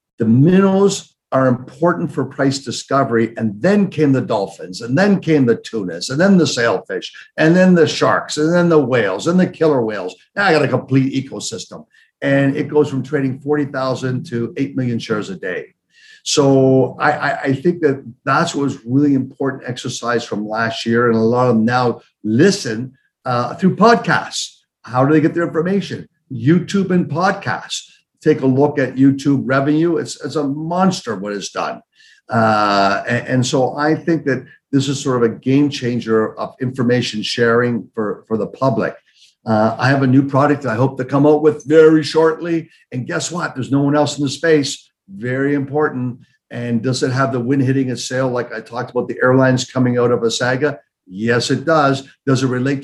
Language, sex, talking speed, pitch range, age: English, male, 195 wpm, 125-150 Hz, 60-79